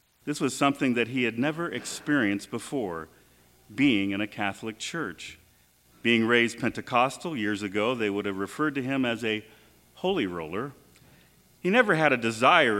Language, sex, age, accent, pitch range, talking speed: English, male, 40-59, American, 100-135 Hz, 160 wpm